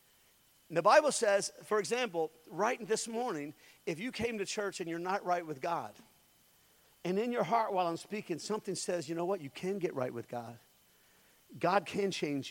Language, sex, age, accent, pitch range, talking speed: English, male, 50-69, American, 160-220 Hz, 190 wpm